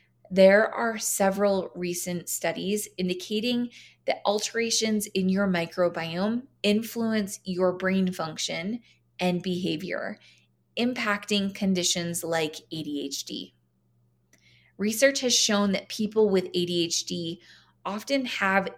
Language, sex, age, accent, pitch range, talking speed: English, female, 20-39, American, 175-205 Hz, 95 wpm